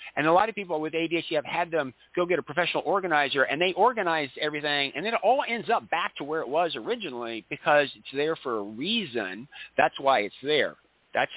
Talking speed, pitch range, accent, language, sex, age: 220 wpm, 140-185 Hz, American, English, male, 50-69